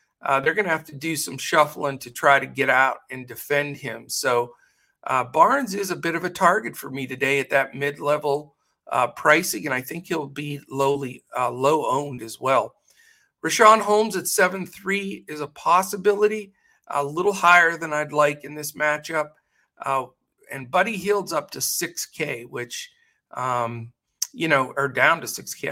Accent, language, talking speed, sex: American, English, 175 wpm, male